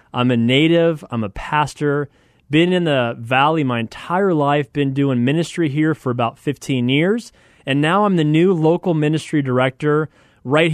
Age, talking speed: 30-49, 170 wpm